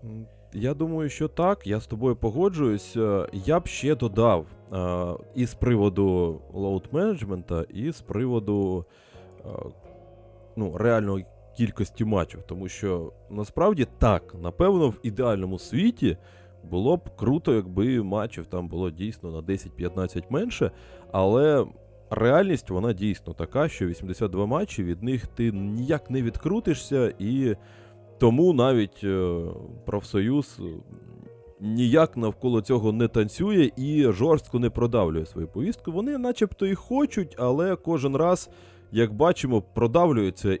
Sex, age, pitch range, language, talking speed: male, 20-39, 95-130 Hz, Ukrainian, 120 wpm